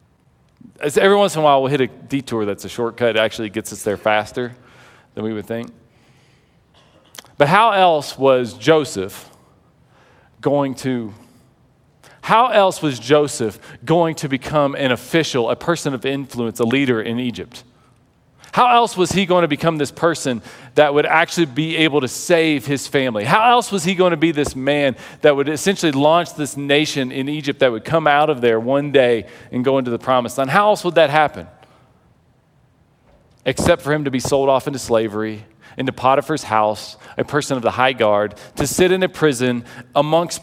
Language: English